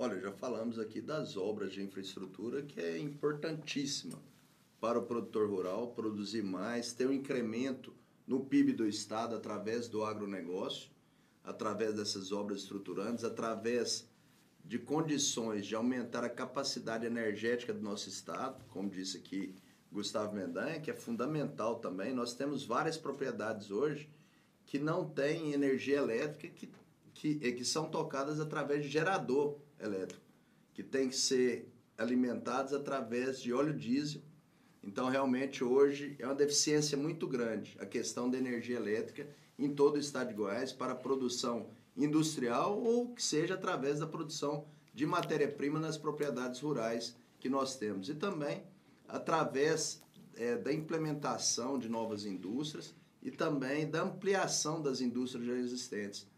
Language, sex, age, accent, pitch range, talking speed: Portuguese, male, 30-49, Brazilian, 115-150 Hz, 140 wpm